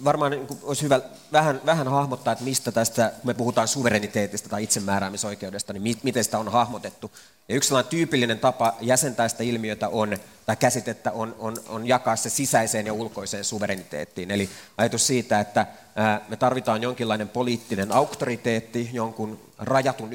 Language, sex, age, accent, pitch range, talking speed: Finnish, male, 30-49, native, 105-120 Hz, 145 wpm